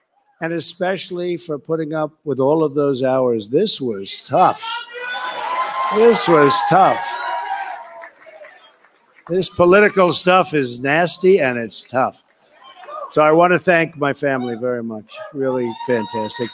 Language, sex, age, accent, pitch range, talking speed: English, male, 60-79, American, 135-185 Hz, 125 wpm